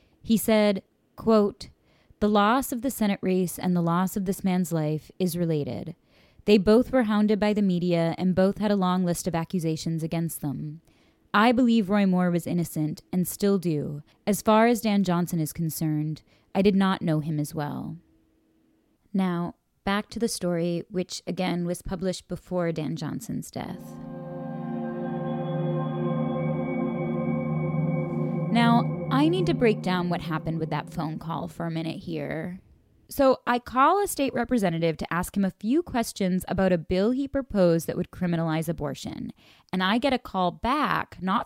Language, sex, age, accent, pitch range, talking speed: English, female, 20-39, American, 160-210 Hz, 165 wpm